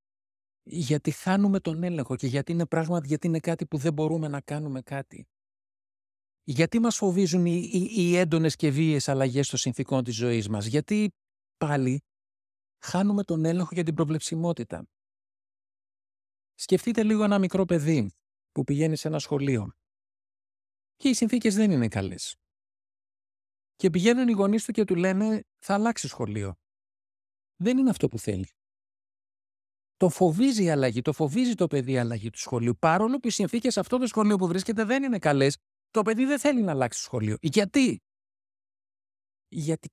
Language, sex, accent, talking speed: Greek, male, native, 160 wpm